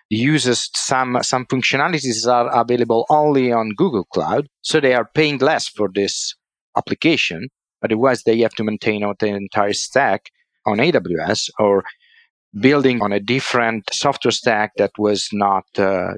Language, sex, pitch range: English, male, 105-130 Hz